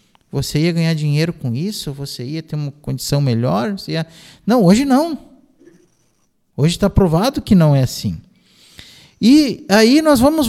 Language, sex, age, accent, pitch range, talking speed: Portuguese, male, 50-69, Brazilian, 155-235 Hz, 150 wpm